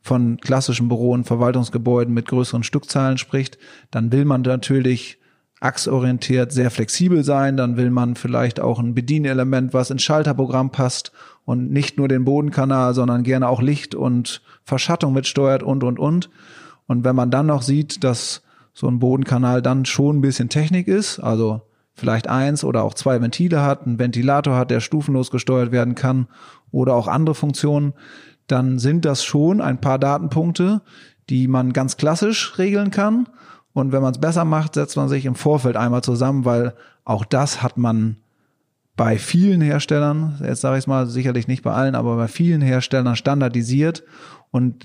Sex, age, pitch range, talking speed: male, 30-49, 125-145 Hz, 170 wpm